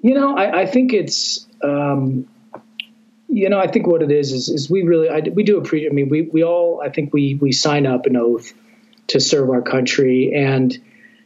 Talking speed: 210 wpm